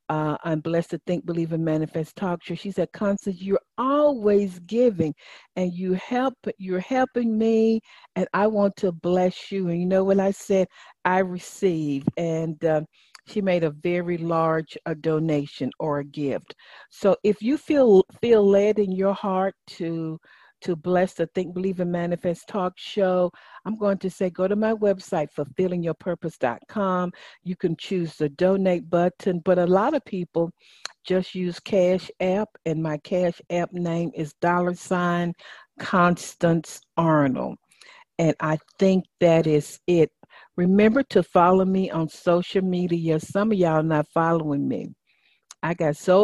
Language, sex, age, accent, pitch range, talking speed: English, female, 50-69, American, 165-195 Hz, 160 wpm